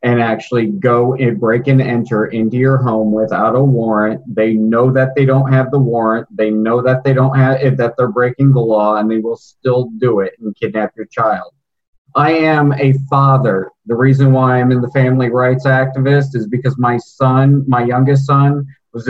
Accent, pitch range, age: American, 115-135 Hz, 40-59